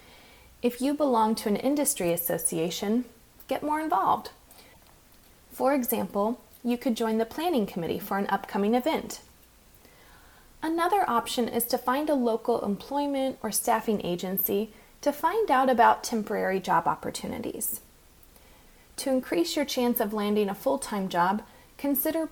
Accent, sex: American, female